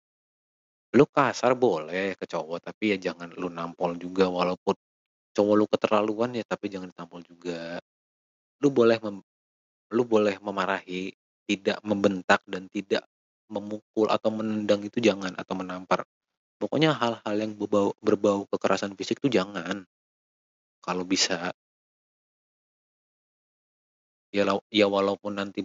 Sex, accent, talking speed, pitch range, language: male, native, 120 wpm, 95-105 Hz, Indonesian